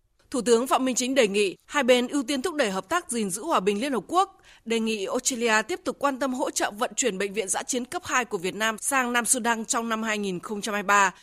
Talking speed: 255 wpm